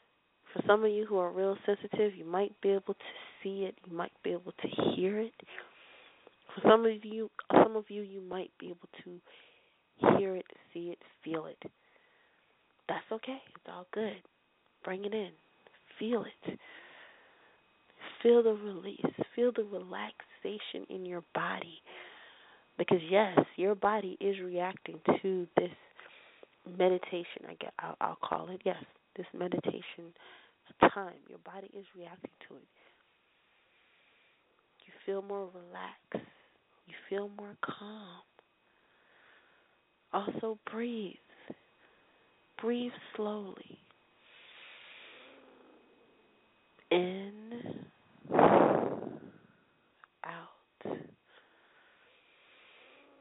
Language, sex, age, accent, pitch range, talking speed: English, female, 30-49, American, 180-215 Hz, 110 wpm